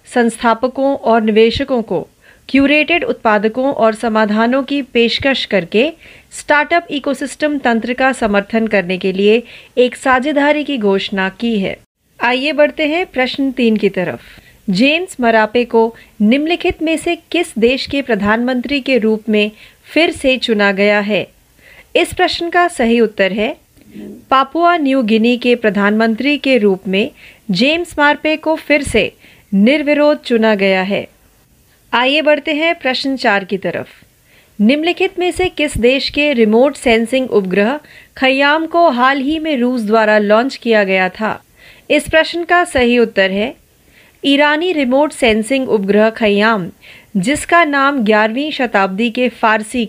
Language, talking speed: Marathi, 140 wpm